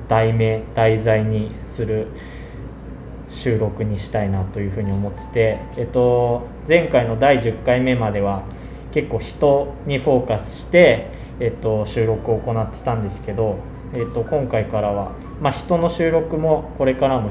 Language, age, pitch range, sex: Japanese, 20-39, 105-125 Hz, male